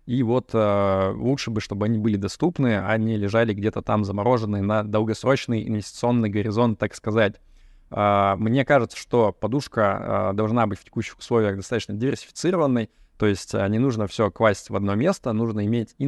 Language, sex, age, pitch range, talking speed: Russian, male, 20-39, 100-120 Hz, 175 wpm